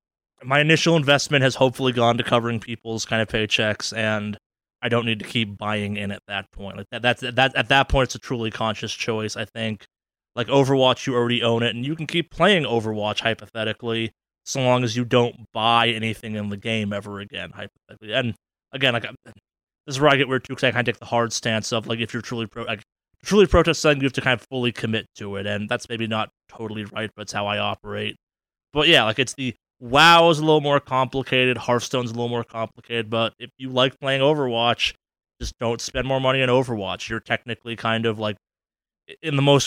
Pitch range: 110-135 Hz